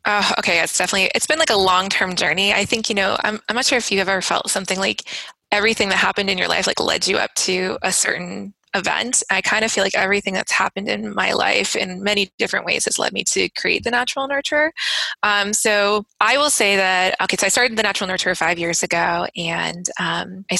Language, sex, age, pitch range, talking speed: English, female, 20-39, 180-205 Hz, 235 wpm